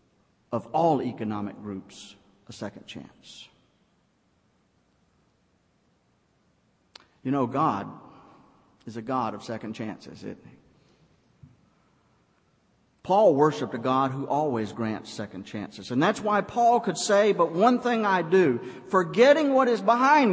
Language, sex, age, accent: English, male, 50-69, American